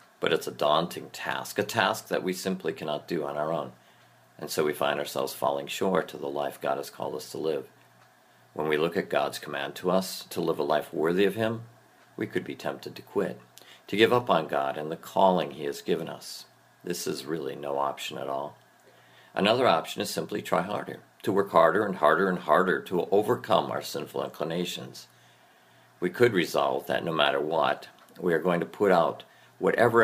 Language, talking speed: English, 205 wpm